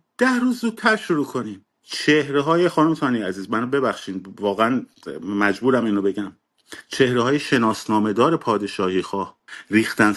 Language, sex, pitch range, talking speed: Persian, male, 110-150 Hz, 135 wpm